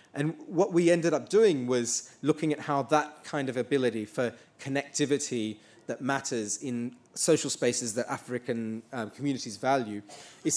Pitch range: 115-145 Hz